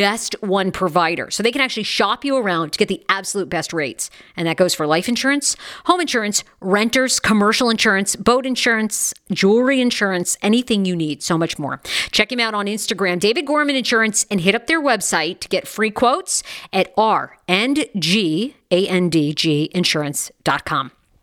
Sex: female